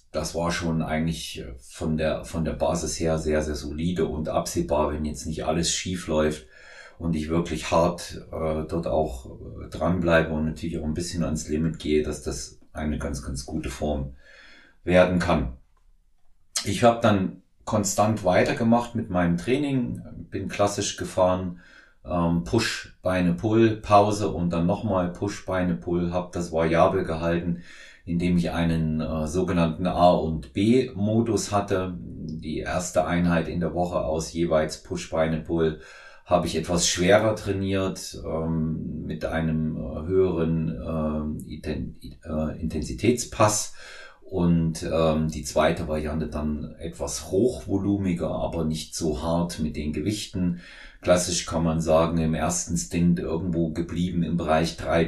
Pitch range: 80-90 Hz